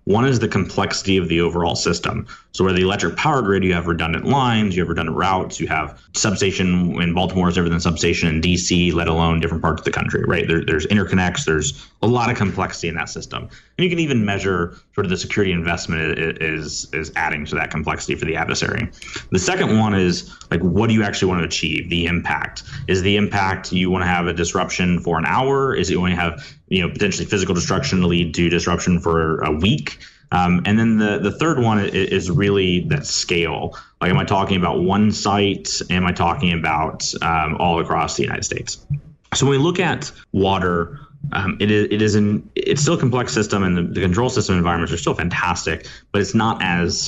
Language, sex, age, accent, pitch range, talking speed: English, male, 30-49, American, 85-100 Hz, 215 wpm